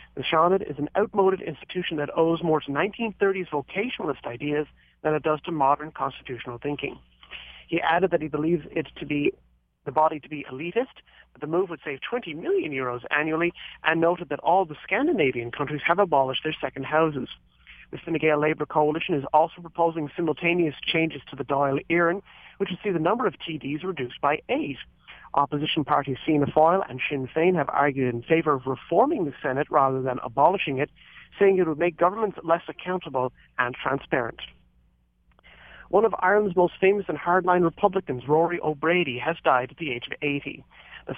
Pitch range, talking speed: 140-170 Hz, 180 wpm